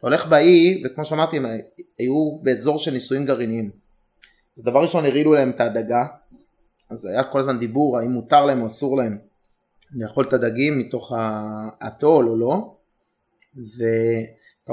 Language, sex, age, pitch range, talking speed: Hebrew, male, 30-49, 120-150 Hz, 155 wpm